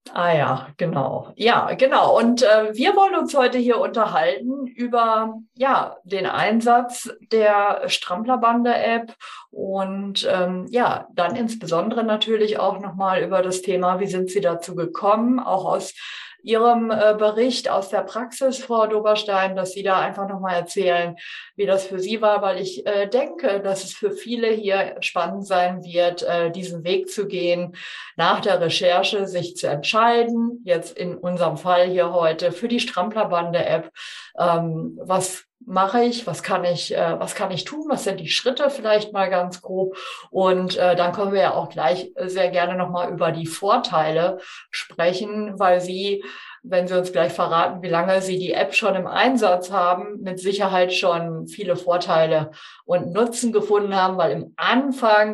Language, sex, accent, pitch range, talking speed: German, female, German, 180-215 Hz, 160 wpm